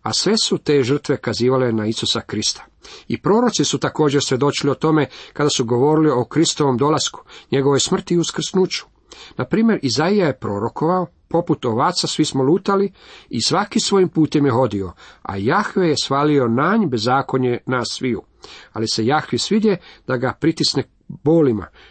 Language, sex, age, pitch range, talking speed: Croatian, male, 50-69, 125-165 Hz, 160 wpm